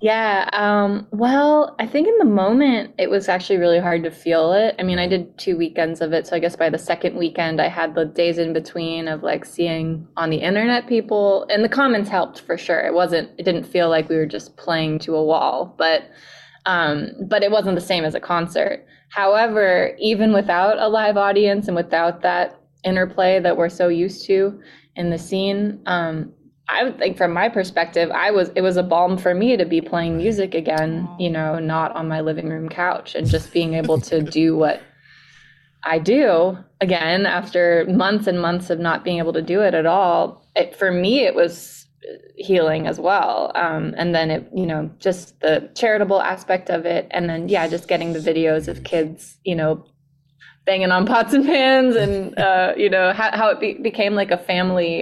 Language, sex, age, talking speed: English, female, 20-39, 210 wpm